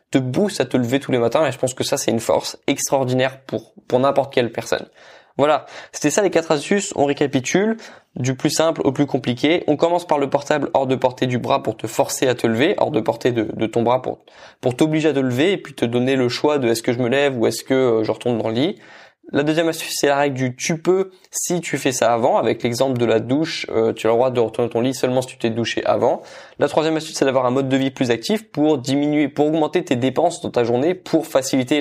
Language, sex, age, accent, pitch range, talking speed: French, male, 20-39, French, 120-150 Hz, 265 wpm